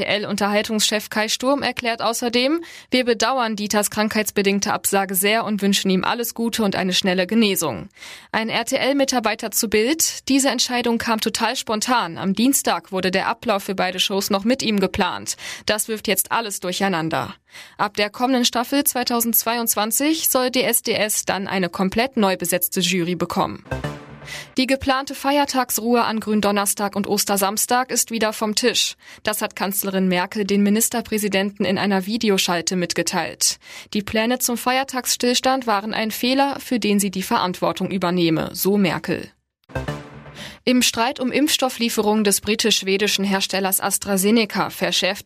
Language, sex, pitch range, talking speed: German, female, 195-240 Hz, 140 wpm